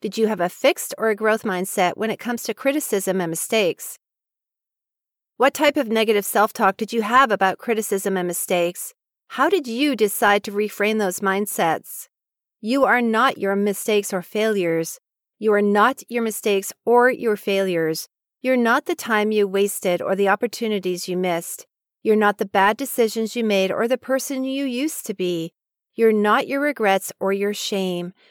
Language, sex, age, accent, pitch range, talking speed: English, female, 40-59, American, 195-240 Hz, 175 wpm